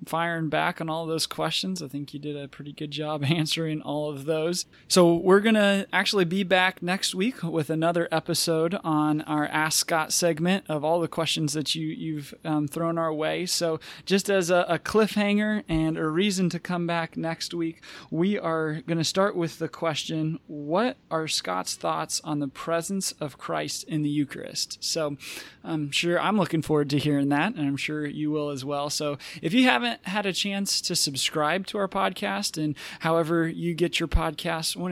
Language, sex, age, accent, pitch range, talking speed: English, male, 20-39, American, 150-175 Hz, 195 wpm